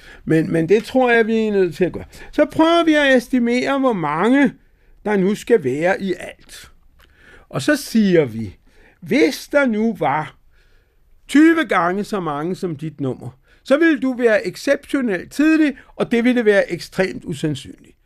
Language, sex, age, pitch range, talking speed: Danish, male, 60-79, 180-255 Hz, 170 wpm